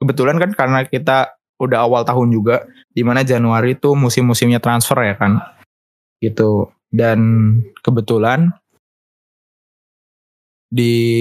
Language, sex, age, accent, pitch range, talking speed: Indonesian, male, 20-39, native, 115-130 Hz, 105 wpm